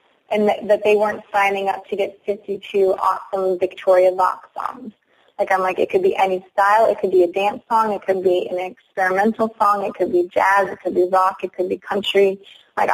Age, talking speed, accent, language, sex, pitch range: 20-39, 220 wpm, American, English, female, 190-215 Hz